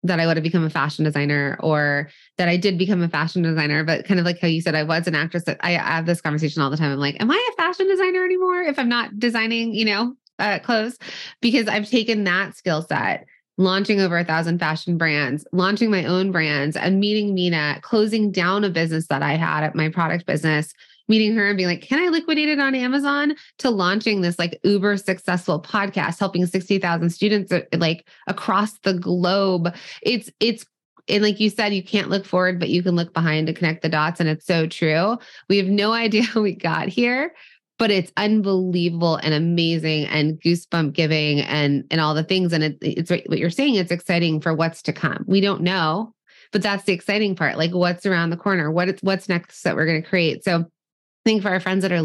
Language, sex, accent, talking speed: English, female, American, 220 wpm